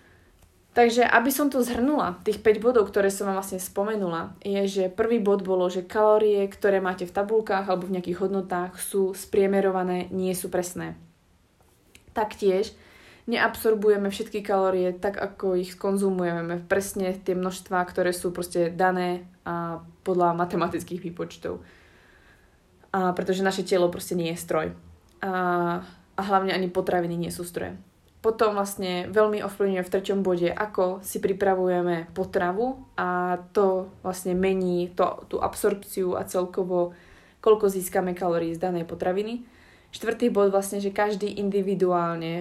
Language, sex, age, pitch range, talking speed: Slovak, female, 20-39, 175-200 Hz, 140 wpm